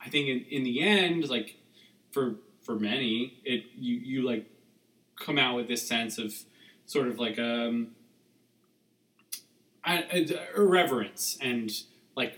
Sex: male